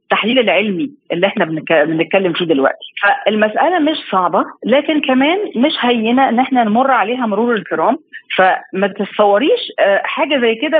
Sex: female